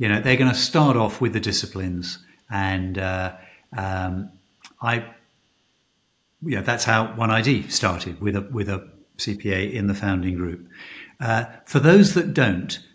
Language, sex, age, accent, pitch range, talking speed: English, male, 50-69, British, 95-120 Hz, 160 wpm